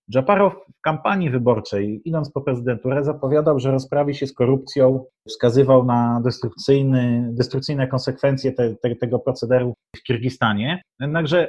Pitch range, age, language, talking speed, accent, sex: 120-150 Hz, 30-49, Polish, 125 wpm, native, male